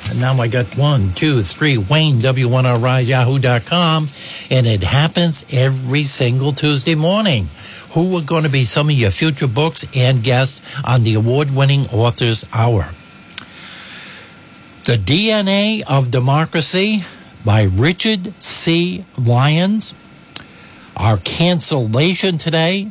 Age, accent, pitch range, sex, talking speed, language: 60-79, American, 125-175 Hz, male, 120 wpm, English